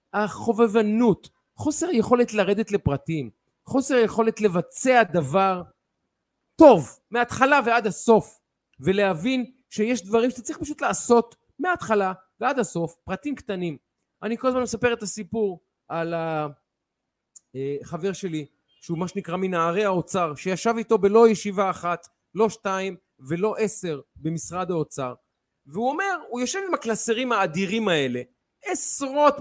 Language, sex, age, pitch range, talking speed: Hebrew, male, 40-59, 185-240 Hz, 120 wpm